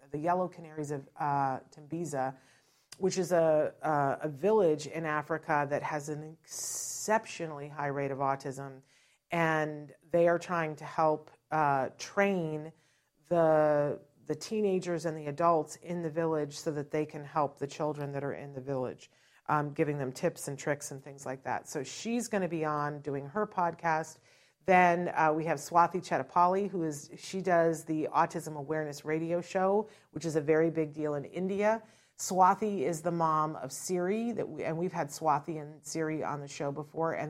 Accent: American